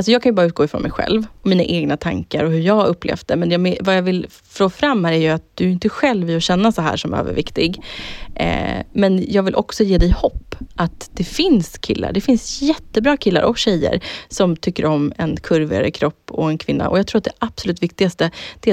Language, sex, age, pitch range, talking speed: Swedish, female, 20-39, 165-220 Hz, 235 wpm